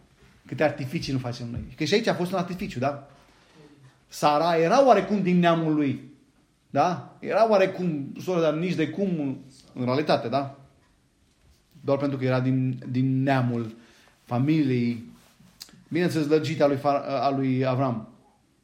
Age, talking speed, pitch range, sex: 40-59, 140 wpm, 135-205 Hz, male